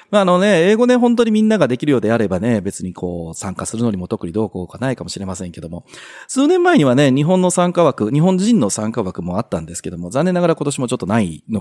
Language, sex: Japanese, male